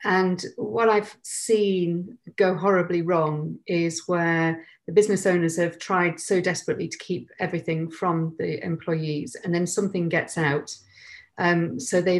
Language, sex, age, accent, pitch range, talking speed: English, female, 40-59, British, 170-200 Hz, 150 wpm